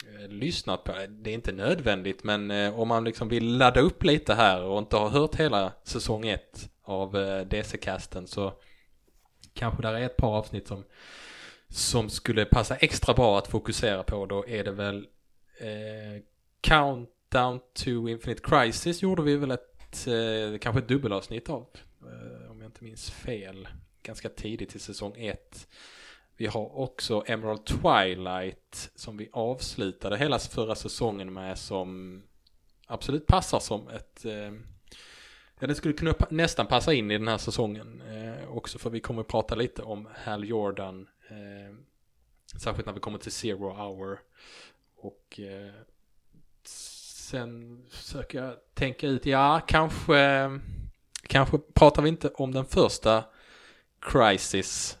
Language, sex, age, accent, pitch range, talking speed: English, male, 20-39, Norwegian, 100-125 Hz, 150 wpm